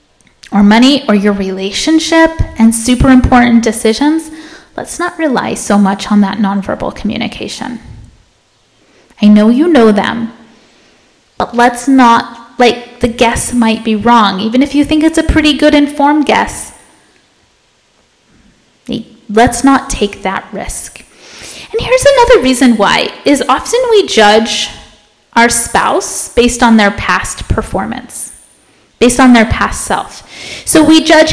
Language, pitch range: English, 220-295 Hz